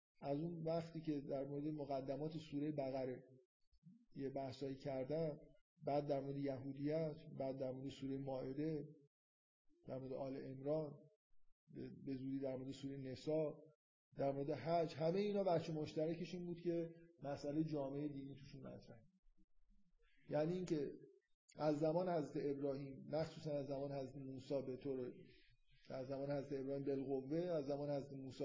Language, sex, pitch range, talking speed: Persian, male, 140-175 Hz, 145 wpm